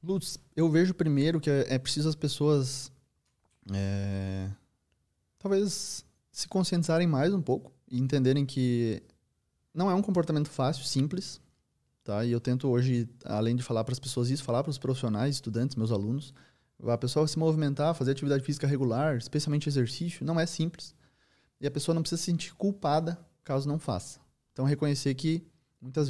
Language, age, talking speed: Portuguese, 20-39, 165 wpm